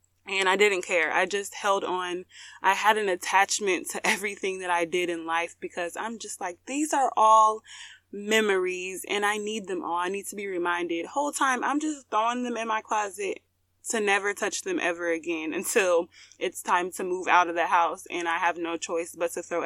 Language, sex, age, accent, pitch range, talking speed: English, female, 20-39, American, 175-255 Hz, 210 wpm